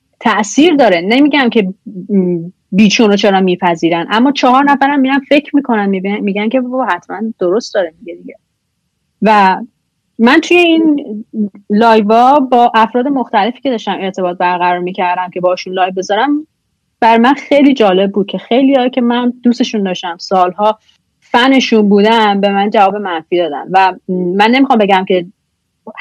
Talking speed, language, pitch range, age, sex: 150 wpm, Persian, 190-255 Hz, 30-49, female